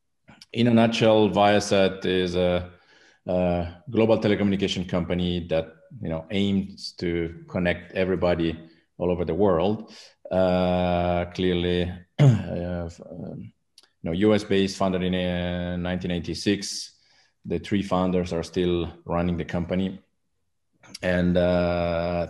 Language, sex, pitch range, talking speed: Turkish, male, 85-95 Hz, 110 wpm